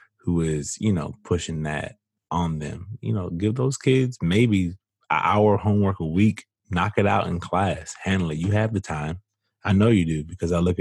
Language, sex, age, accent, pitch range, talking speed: English, male, 20-39, American, 85-105 Hz, 200 wpm